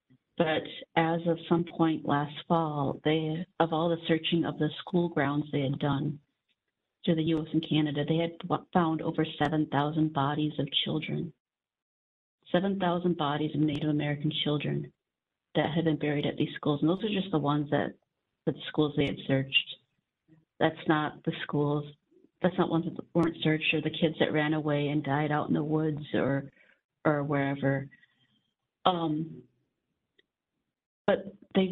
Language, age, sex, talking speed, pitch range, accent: English, 40-59, female, 160 wpm, 150-170 Hz, American